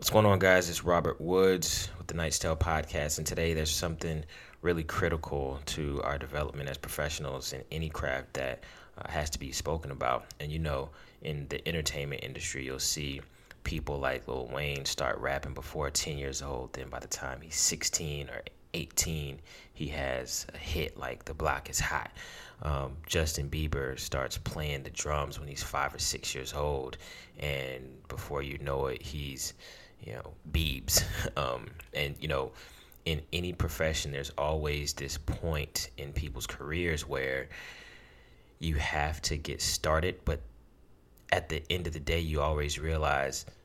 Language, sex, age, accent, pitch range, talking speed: English, male, 30-49, American, 70-85 Hz, 170 wpm